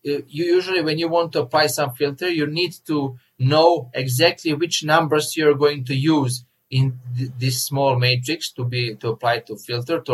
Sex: male